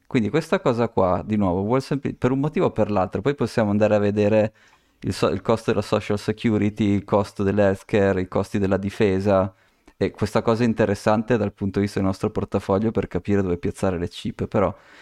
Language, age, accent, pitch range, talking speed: Italian, 20-39, native, 95-110 Hz, 210 wpm